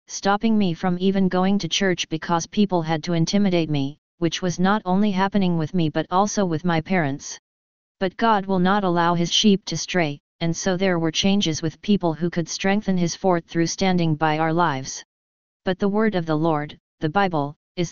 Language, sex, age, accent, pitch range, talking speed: English, female, 40-59, American, 160-190 Hz, 200 wpm